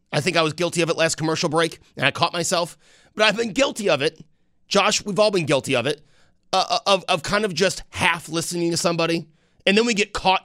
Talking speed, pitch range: 240 wpm, 145-185 Hz